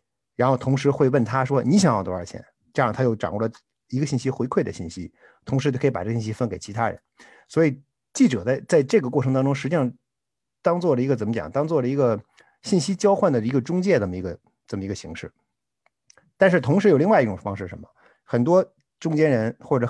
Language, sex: Chinese, male